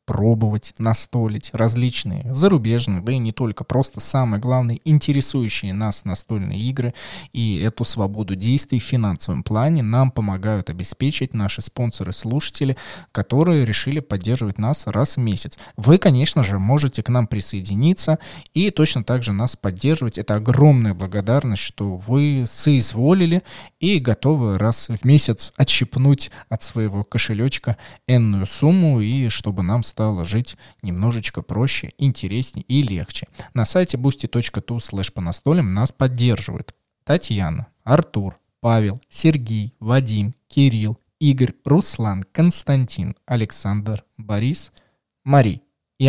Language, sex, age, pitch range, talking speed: Russian, male, 20-39, 105-140 Hz, 125 wpm